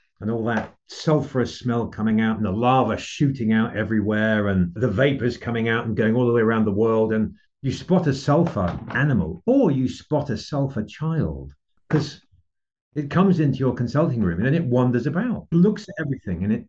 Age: 50-69